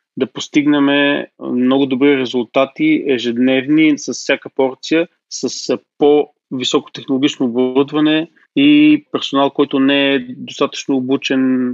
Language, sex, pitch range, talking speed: Bulgarian, male, 125-145 Hz, 95 wpm